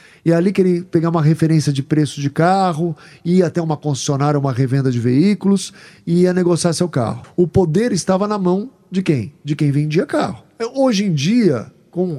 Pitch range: 140-185 Hz